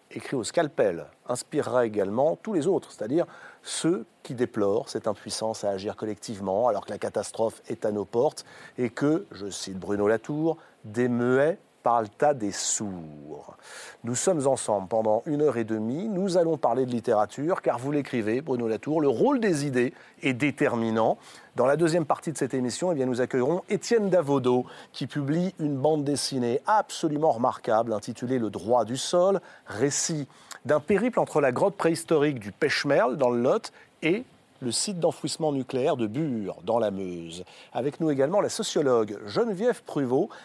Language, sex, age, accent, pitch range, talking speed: French, male, 40-59, French, 120-170 Hz, 170 wpm